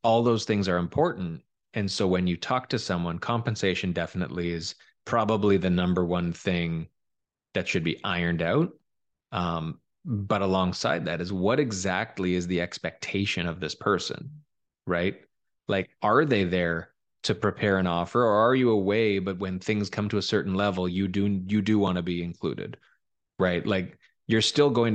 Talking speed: 175 wpm